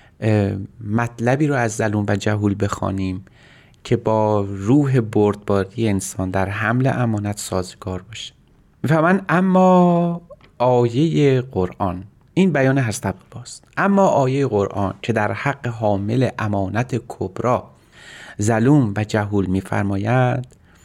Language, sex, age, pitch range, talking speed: Persian, male, 30-49, 100-130 Hz, 110 wpm